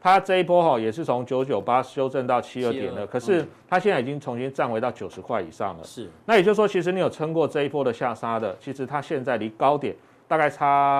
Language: Chinese